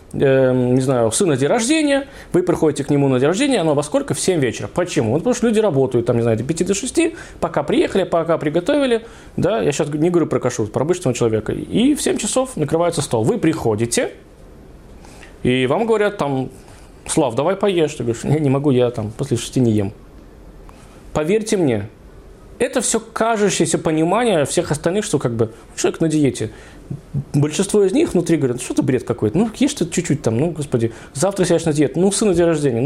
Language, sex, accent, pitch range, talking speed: Russian, male, native, 130-195 Hz, 205 wpm